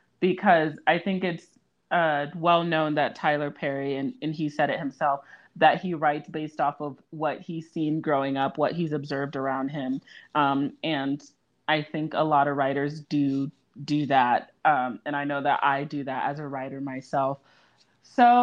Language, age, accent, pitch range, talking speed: English, 30-49, American, 140-180 Hz, 180 wpm